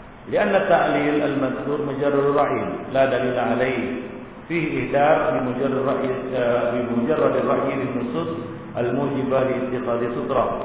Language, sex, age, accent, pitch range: Indonesian, male, 40-59, native, 120-140 Hz